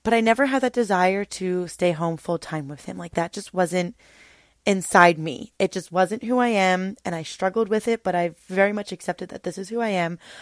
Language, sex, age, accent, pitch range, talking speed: English, female, 20-39, American, 180-225 Hz, 235 wpm